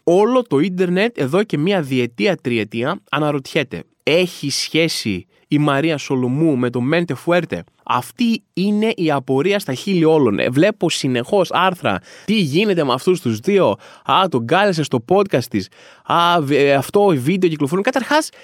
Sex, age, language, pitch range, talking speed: male, 20-39, Greek, 155-230 Hz, 145 wpm